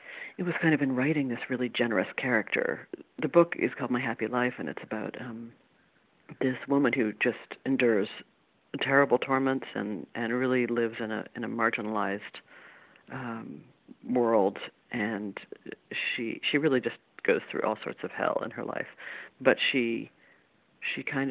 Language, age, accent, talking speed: English, 40-59, American, 160 wpm